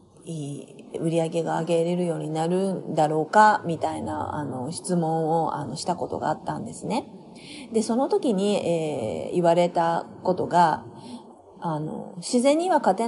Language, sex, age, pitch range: Japanese, female, 30-49, 170-255 Hz